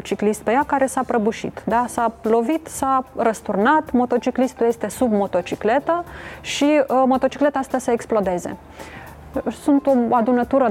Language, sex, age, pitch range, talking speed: Romanian, female, 20-39, 205-260 Hz, 135 wpm